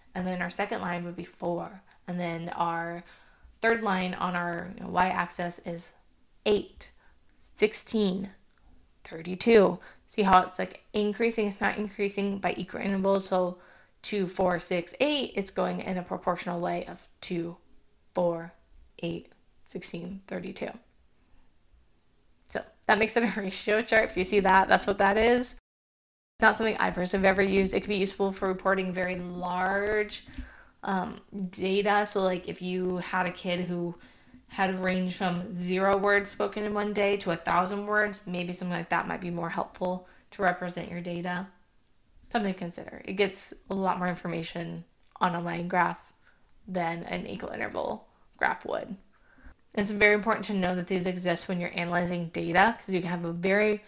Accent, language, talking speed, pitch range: American, English, 170 wpm, 175-205 Hz